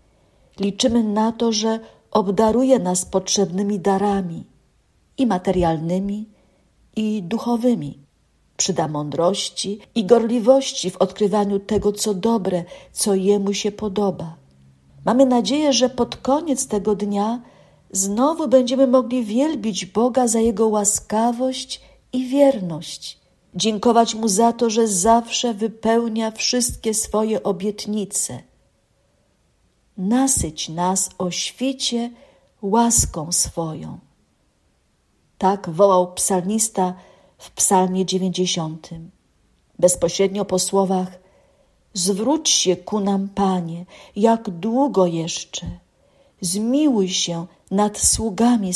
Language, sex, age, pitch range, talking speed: Polish, female, 50-69, 185-230 Hz, 95 wpm